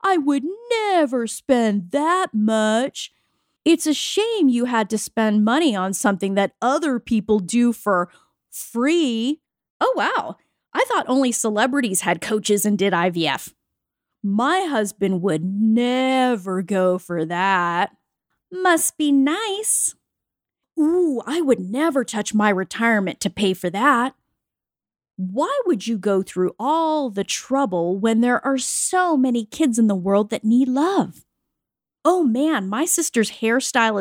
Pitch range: 200-290 Hz